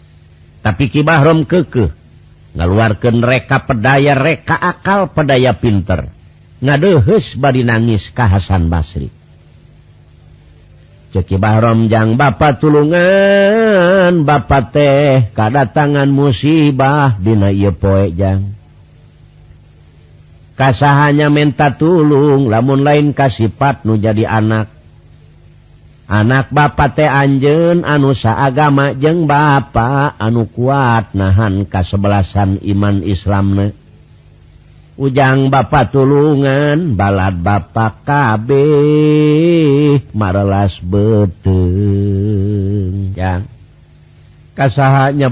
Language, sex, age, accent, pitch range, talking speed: Indonesian, male, 50-69, native, 100-145 Hz, 80 wpm